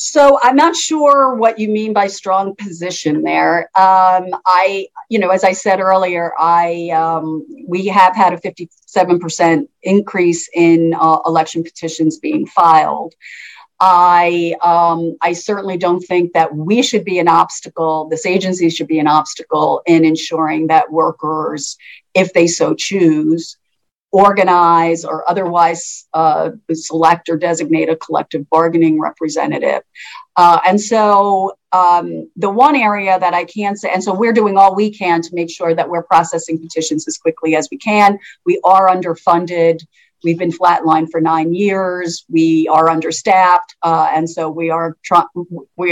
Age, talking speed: 50-69, 155 wpm